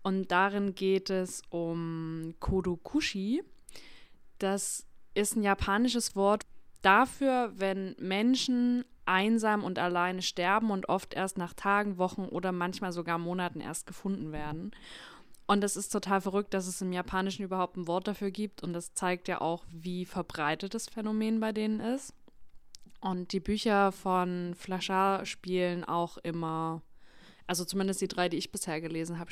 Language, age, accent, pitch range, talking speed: German, 20-39, German, 180-205 Hz, 150 wpm